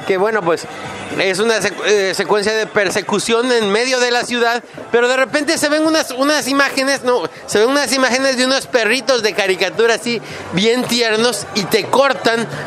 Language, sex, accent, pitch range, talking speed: English, male, Mexican, 185-235 Hz, 175 wpm